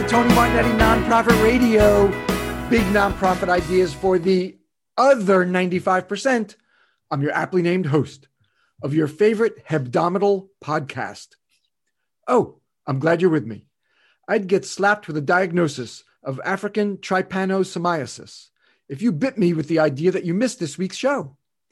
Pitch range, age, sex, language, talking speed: 155-205 Hz, 40-59, male, English, 140 wpm